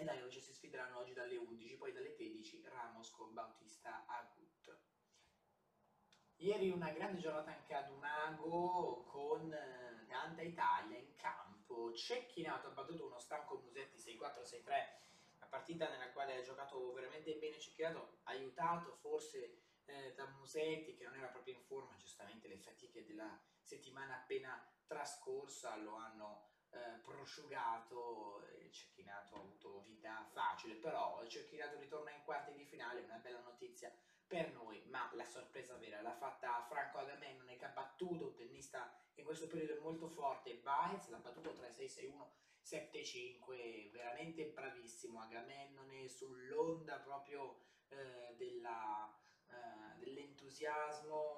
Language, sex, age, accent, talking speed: Italian, male, 20-39, native, 135 wpm